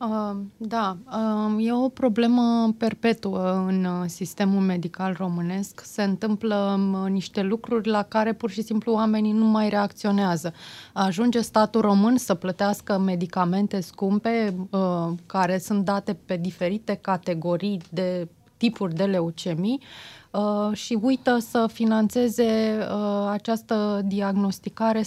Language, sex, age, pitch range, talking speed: Romanian, female, 20-39, 190-225 Hz, 110 wpm